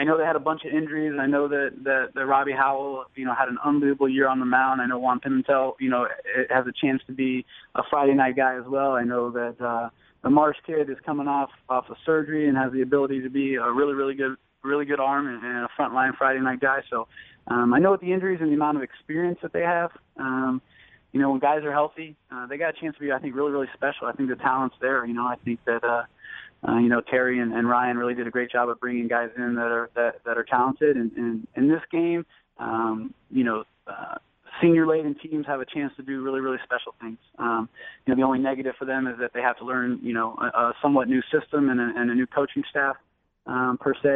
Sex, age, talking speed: male, 20-39, 260 wpm